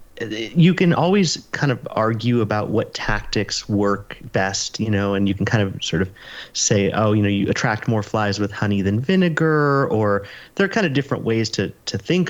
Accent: American